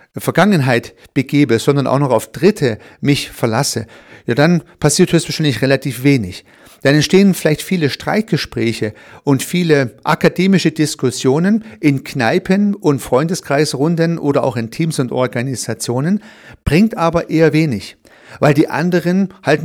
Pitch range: 125-165 Hz